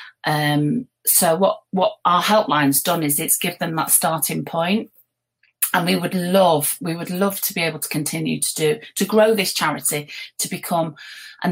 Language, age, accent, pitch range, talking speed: English, 40-59, British, 155-200 Hz, 180 wpm